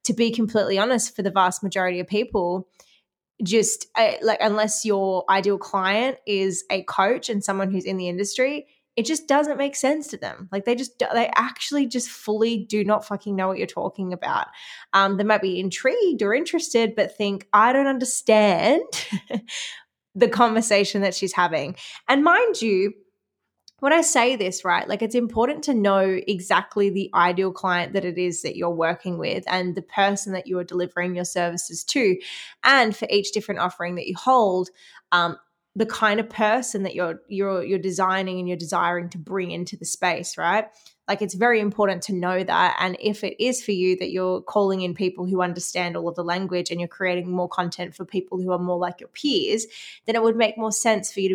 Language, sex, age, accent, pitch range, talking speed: English, female, 10-29, Australian, 180-220 Hz, 200 wpm